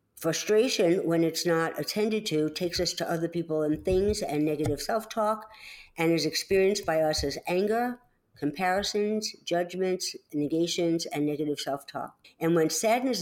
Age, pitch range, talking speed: 60-79, 150-195 Hz, 145 wpm